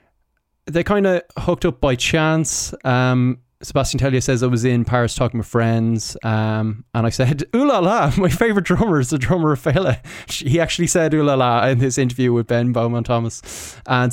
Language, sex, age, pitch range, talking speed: English, male, 20-39, 110-125 Hz, 200 wpm